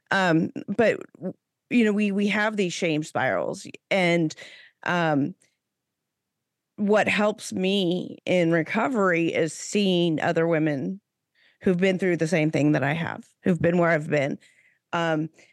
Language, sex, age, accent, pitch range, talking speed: English, female, 30-49, American, 170-210 Hz, 140 wpm